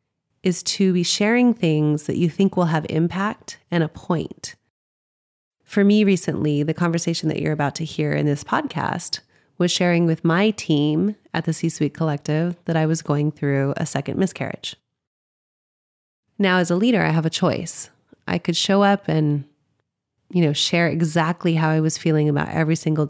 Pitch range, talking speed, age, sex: 150-180 Hz, 175 wpm, 30-49, female